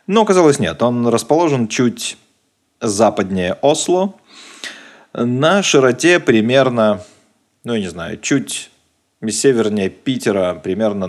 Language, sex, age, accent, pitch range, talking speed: Russian, male, 30-49, native, 95-135 Hz, 105 wpm